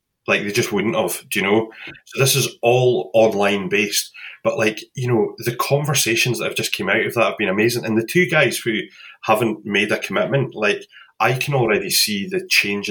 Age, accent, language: 20-39, British, English